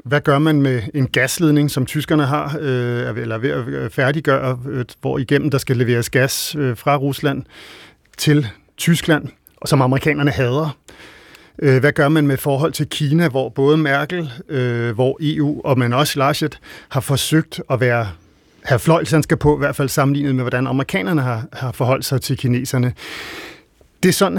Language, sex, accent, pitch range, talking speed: Danish, male, native, 125-150 Hz, 160 wpm